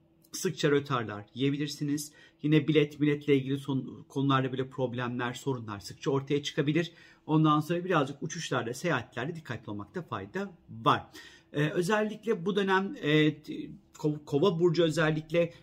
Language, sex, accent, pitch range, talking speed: Turkish, male, native, 130-170 Hz, 125 wpm